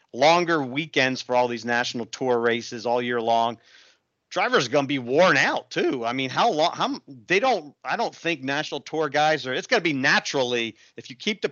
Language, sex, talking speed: English, male, 210 wpm